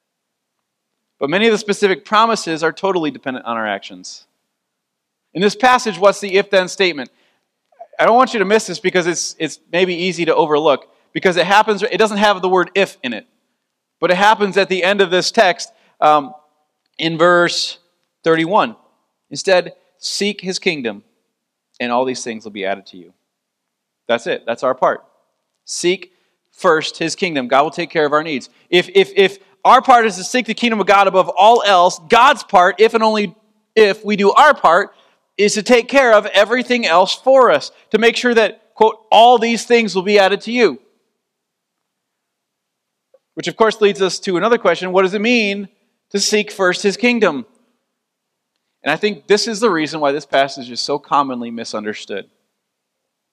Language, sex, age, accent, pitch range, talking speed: English, male, 30-49, American, 160-215 Hz, 185 wpm